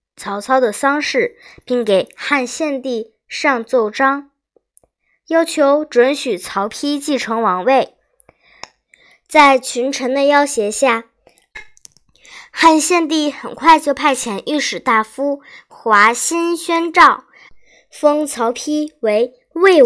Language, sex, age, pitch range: Chinese, male, 10-29, 235-320 Hz